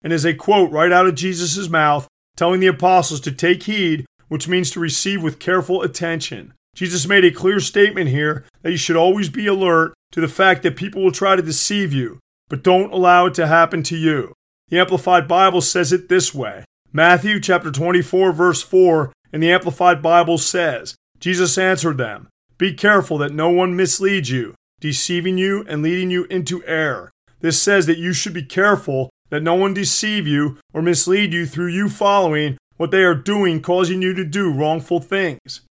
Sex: male